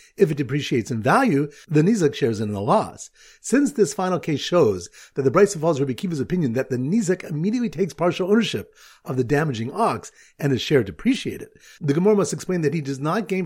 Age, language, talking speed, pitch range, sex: 50-69, English, 215 wpm, 140-200 Hz, male